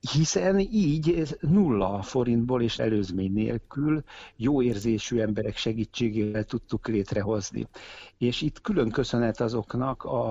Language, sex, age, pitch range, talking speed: Hungarian, male, 60-79, 105-130 Hz, 110 wpm